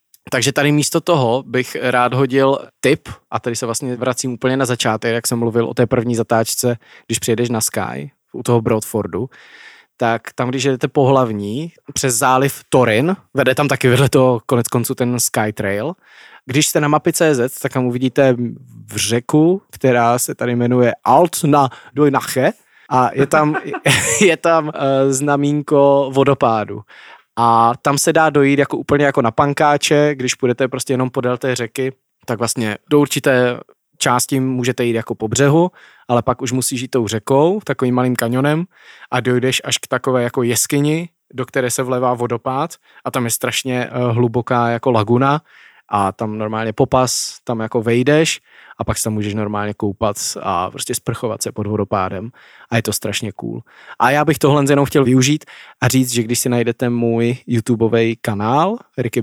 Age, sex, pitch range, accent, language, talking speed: 20-39, male, 115-140 Hz, native, Czech, 175 wpm